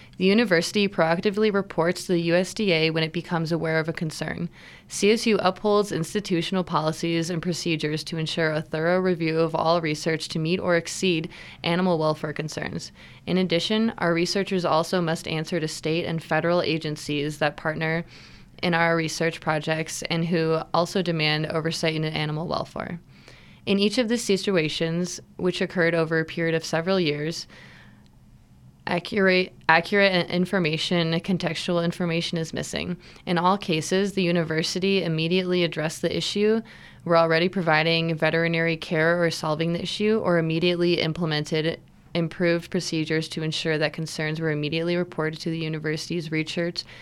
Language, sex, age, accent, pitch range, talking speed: English, female, 20-39, American, 160-180 Hz, 145 wpm